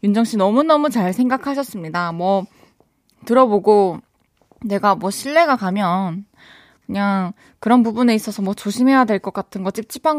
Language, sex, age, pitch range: Korean, female, 20-39, 180-245 Hz